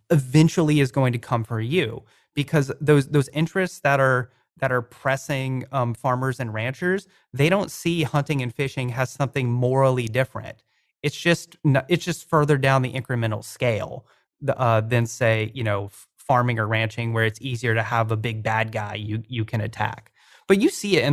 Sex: male